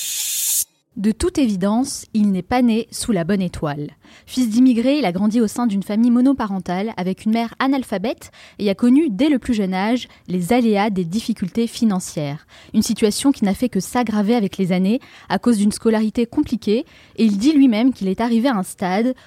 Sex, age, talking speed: female, 20-39, 195 wpm